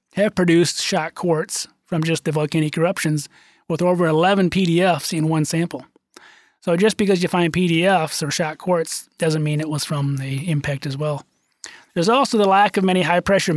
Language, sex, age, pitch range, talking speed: English, male, 30-49, 150-185 Hz, 180 wpm